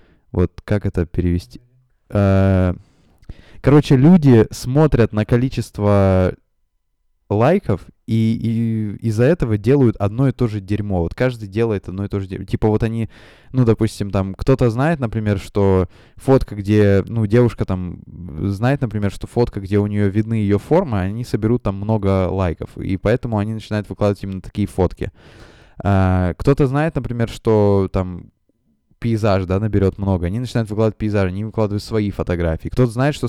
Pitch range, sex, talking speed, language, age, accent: 95-120 Hz, male, 160 wpm, Russian, 20-39, native